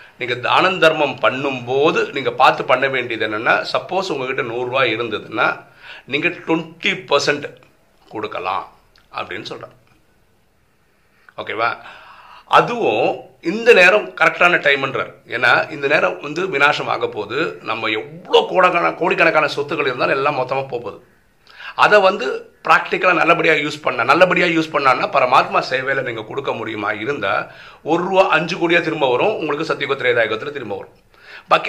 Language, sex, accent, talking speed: Tamil, male, native, 115 wpm